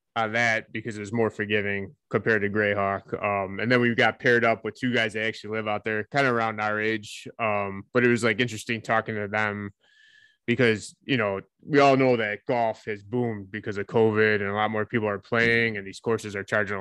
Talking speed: 230 wpm